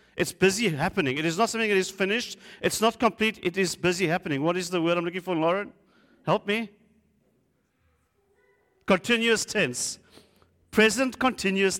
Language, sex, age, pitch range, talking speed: English, male, 50-69, 160-215 Hz, 160 wpm